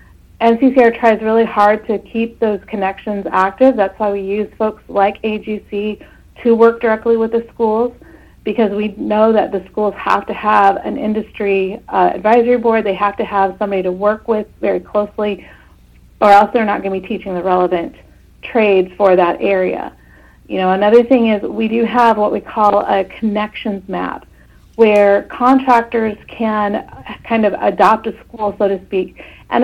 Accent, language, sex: American, English, female